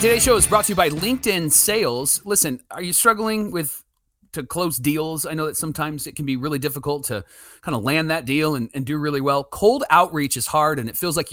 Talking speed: 240 wpm